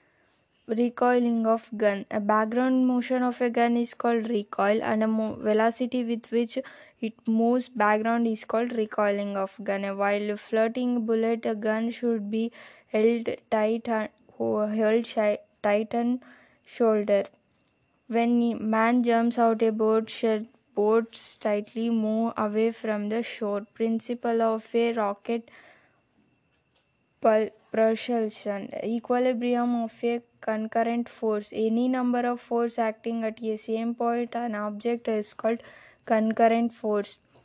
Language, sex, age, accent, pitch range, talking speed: English, female, 20-39, Indian, 220-235 Hz, 135 wpm